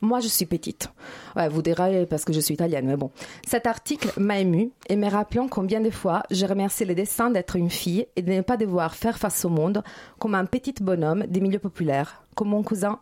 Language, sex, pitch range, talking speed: French, female, 170-210 Hz, 230 wpm